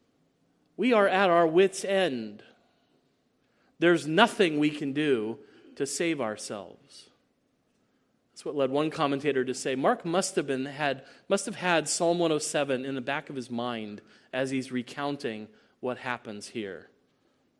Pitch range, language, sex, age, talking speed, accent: 135-170 Hz, English, male, 40-59, 145 wpm, American